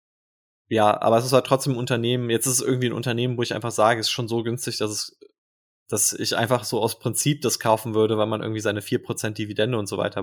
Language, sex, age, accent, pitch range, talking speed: German, male, 20-39, German, 105-125 Hz, 260 wpm